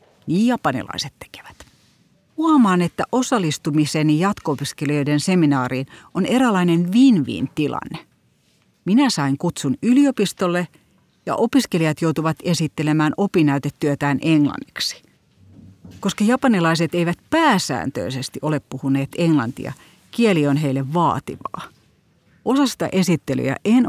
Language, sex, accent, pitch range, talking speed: Finnish, female, native, 140-180 Hz, 90 wpm